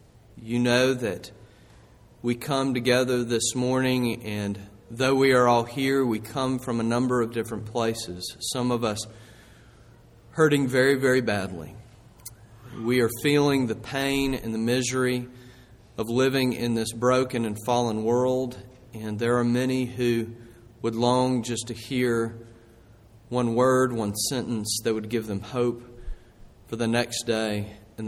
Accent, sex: American, male